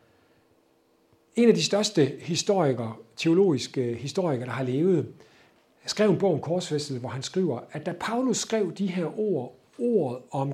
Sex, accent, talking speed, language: male, native, 155 wpm, Danish